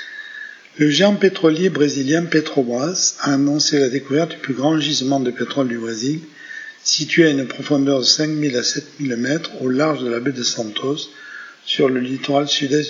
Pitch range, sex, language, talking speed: 125-155 Hz, male, French, 180 wpm